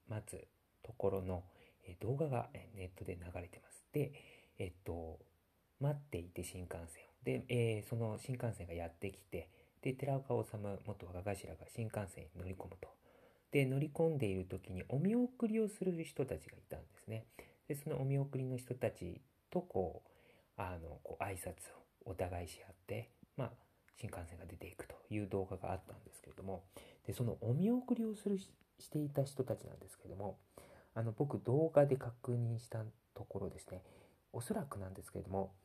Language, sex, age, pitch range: Japanese, male, 40-59, 95-135 Hz